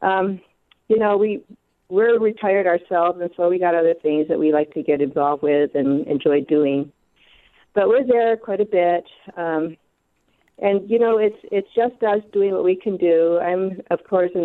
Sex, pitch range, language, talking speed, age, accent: female, 165-205 Hz, English, 190 wpm, 50-69, American